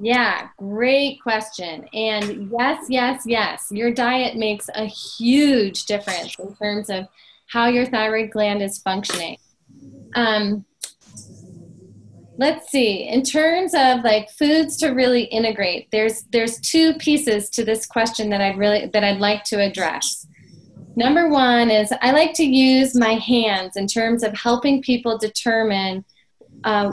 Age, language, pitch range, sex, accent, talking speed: 20-39, English, 210-260 Hz, female, American, 145 wpm